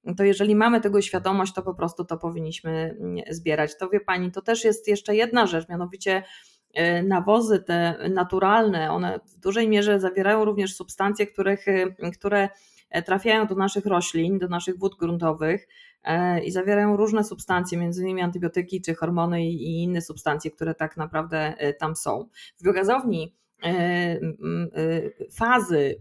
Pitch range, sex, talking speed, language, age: 170-210 Hz, female, 140 wpm, Polish, 20-39